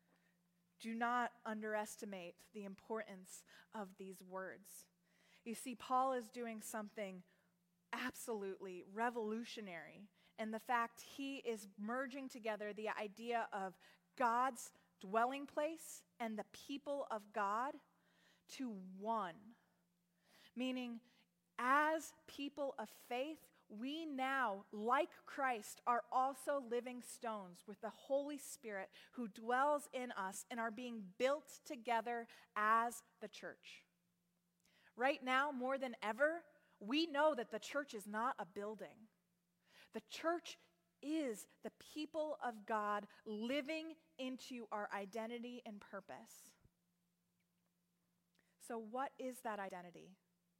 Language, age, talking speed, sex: English, 20-39, 115 wpm, female